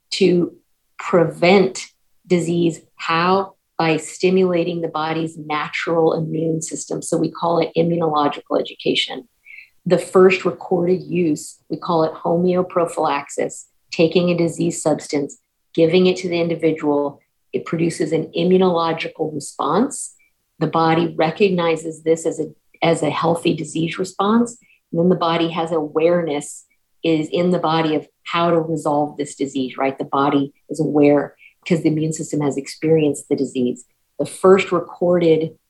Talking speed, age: 140 wpm, 40-59